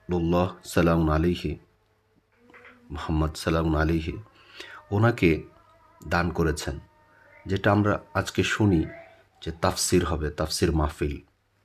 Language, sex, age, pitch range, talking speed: Bengali, male, 50-69, 85-105 Hz, 90 wpm